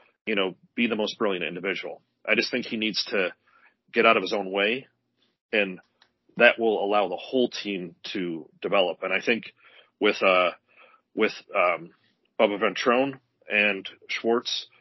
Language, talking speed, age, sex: English, 160 wpm, 30-49, male